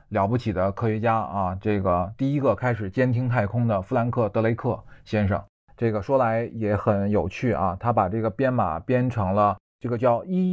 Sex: male